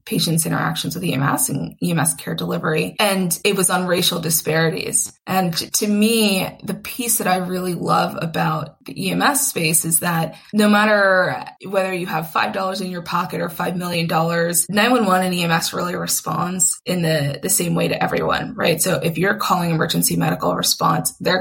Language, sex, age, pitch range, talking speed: English, female, 20-39, 170-195 Hz, 185 wpm